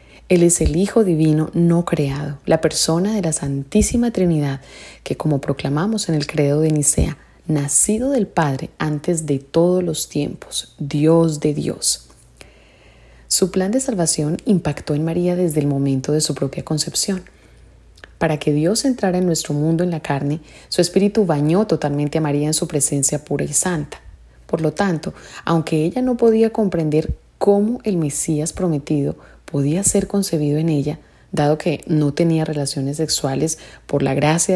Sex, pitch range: female, 145-180 Hz